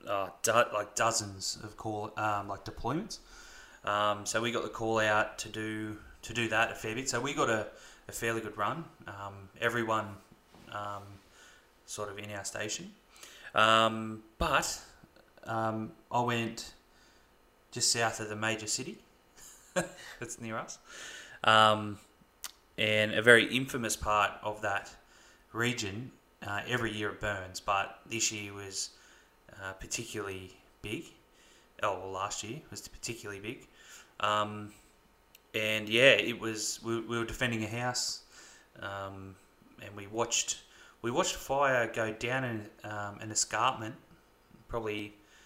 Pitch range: 105-115 Hz